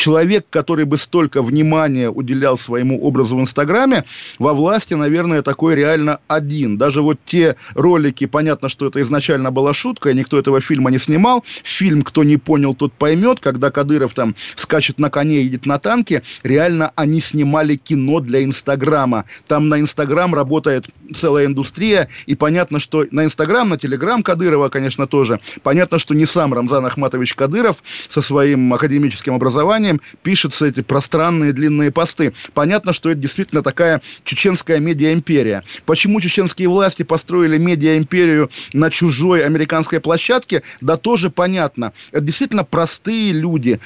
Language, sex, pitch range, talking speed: Russian, male, 140-170 Hz, 150 wpm